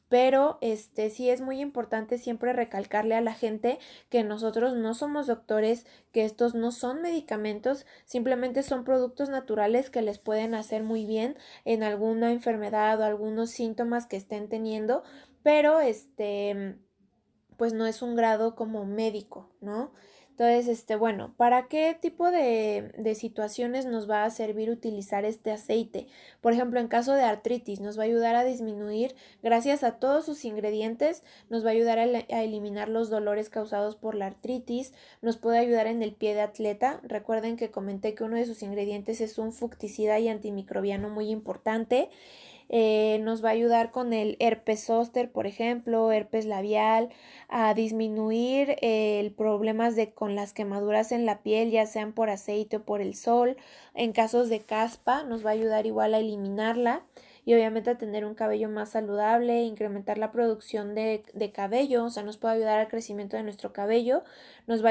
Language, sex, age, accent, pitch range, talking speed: Spanish, female, 20-39, Mexican, 215-240 Hz, 170 wpm